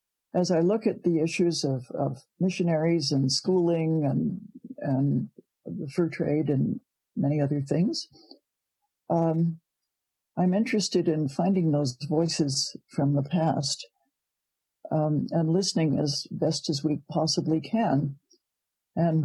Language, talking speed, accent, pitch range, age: English, 125 wpm, American, 150-185 Hz, 60-79